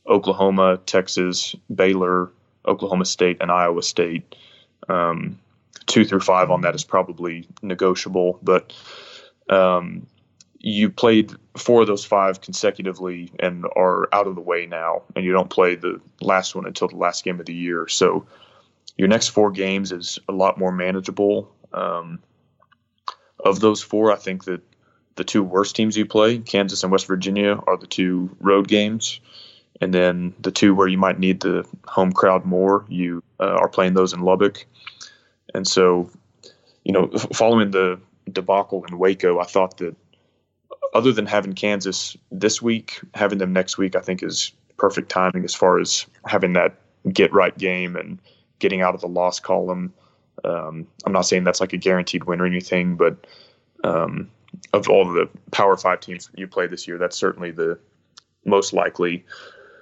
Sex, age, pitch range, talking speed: male, 20-39, 90-105 Hz, 170 wpm